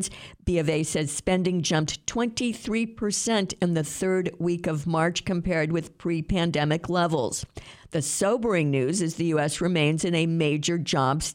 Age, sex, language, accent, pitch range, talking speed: 50-69, female, English, American, 150-185 Hz, 155 wpm